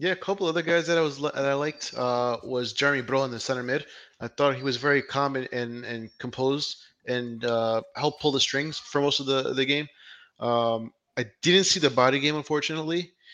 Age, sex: 20-39, male